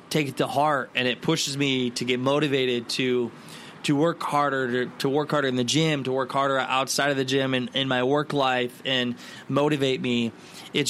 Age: 20-39